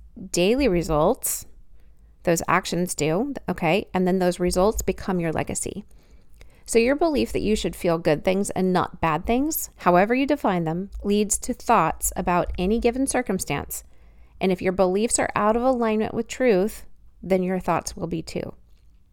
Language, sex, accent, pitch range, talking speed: English, female, American, 175-220 Hz, 165 wpm